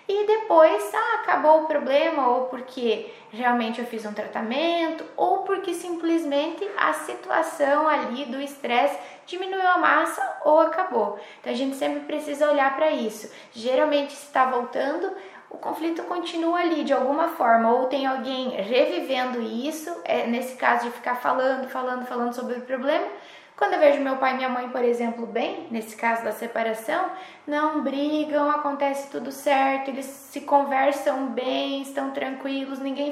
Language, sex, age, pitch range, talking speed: Portuguese, female, 10-29, 265-320 Hz, 160 wpm